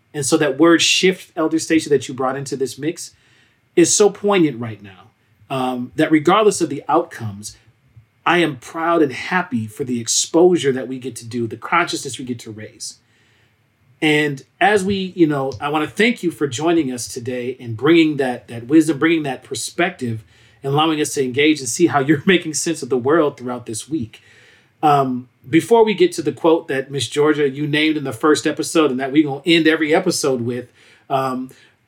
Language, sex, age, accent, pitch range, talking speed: English, male, 40-59, American, 130-175 Hz, 200 wpm